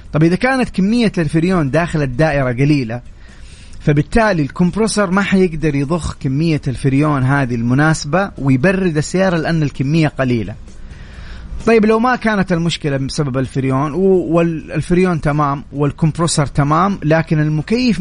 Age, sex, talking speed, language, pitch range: 30-49, male, 115 wpm, English, 135-180 Hz